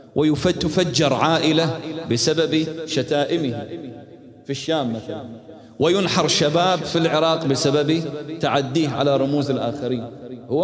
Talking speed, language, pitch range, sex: 95 wpm, Arabic, 100-140 Hz, male